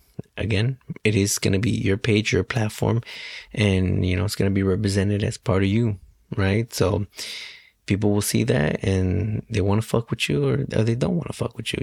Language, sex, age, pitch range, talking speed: English, male, 20-39, 100-115 Hz, 220 wpm